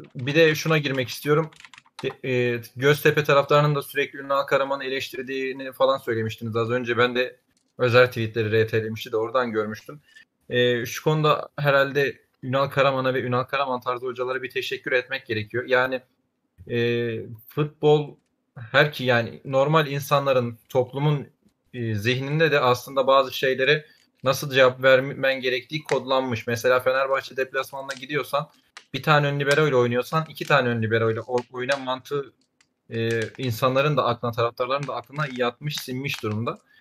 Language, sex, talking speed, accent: Turkish, male, 135 wpm, native